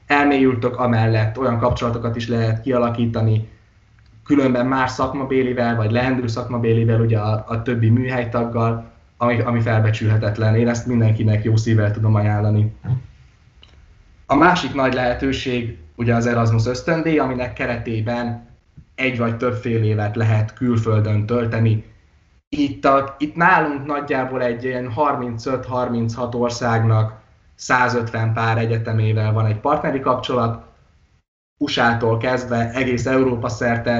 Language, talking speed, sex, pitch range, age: Hungarian, 115 wpm, male, 110-125 Hz, 10-29